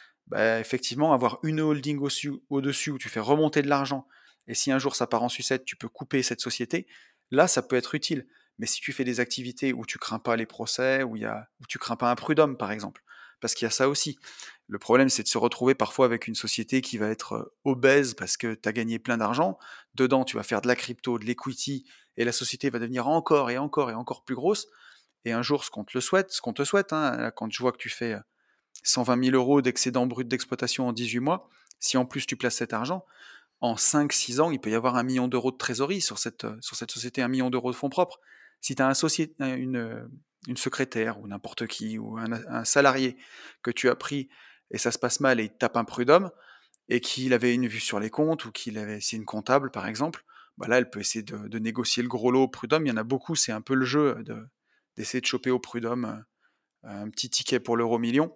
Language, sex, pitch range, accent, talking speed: French, male, 115-135 Hz, French, 245 wpm